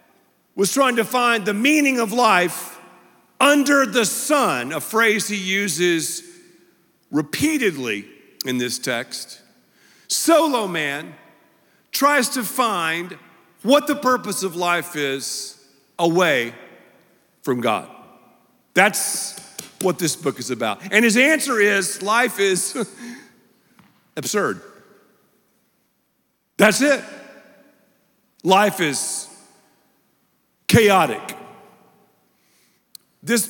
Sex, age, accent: male, 50-69, American